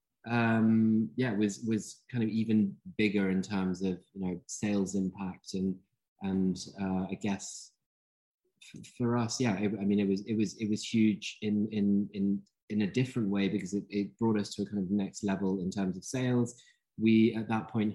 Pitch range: 95-110 Hz